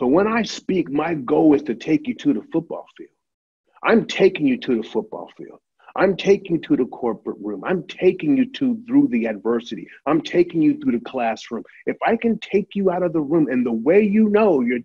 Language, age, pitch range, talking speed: English, 50-69, 170-235 Hz, 225 wpm